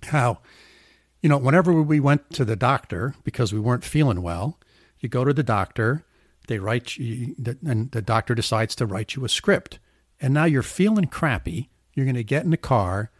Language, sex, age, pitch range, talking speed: English, male, 60-79, 115-145 Hz, 195 wpm